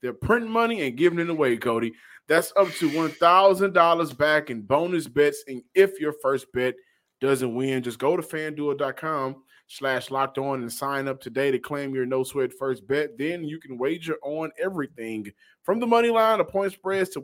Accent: American